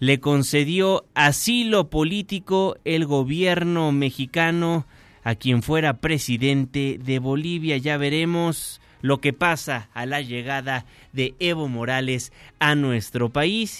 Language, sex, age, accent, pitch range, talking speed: Spanish, male, 30-49, Mexican, 125-155 Hz, 115 wpm